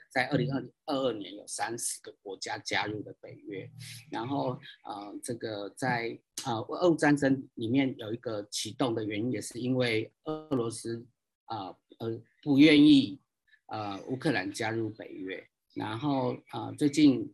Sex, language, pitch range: male, Chinese, 115-155 Hz